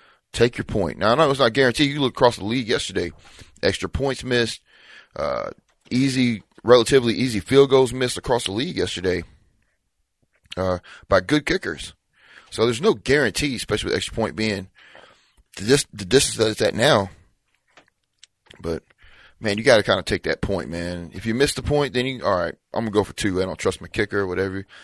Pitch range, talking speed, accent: 95-130 Hz, 195 wpm, American